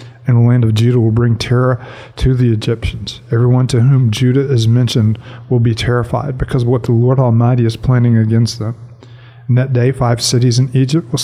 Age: 50-69